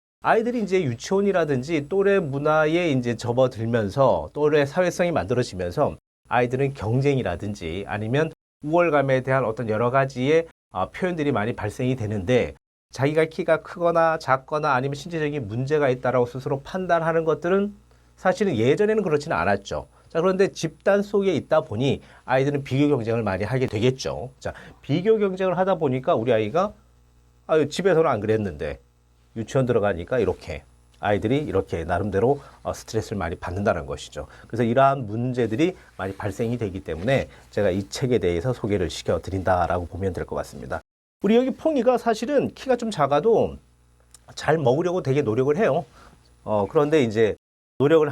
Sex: male